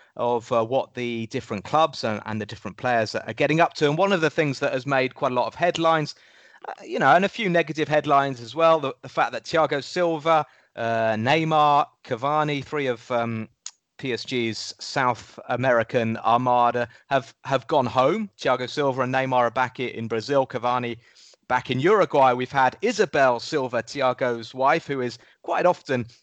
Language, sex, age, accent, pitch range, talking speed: English, male, 30-49, British, 120-160 Hz, 185 wpm